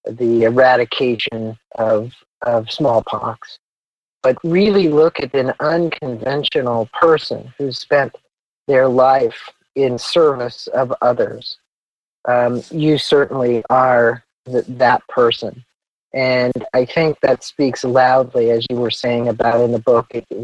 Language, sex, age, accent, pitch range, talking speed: English, male, 40-59, American, 120-140 Hz, 125 wpm